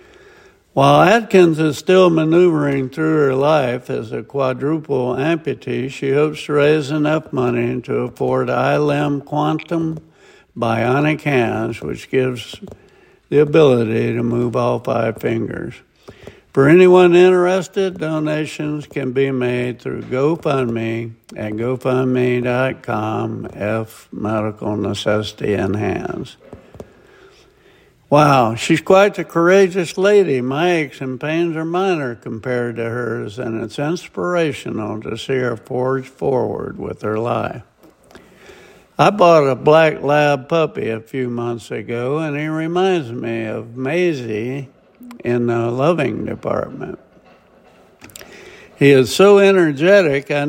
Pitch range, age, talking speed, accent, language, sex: 120-165 Hz, 60-79, 120 wpm, American, English, male